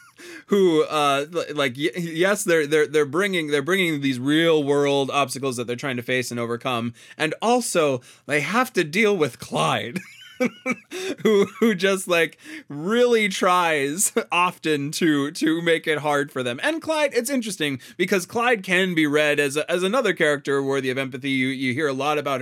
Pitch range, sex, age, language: 130-170 Hz, male, 20-39, English